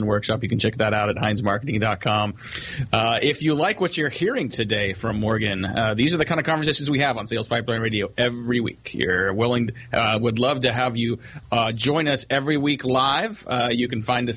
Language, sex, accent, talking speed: English, male, American, 220 wpm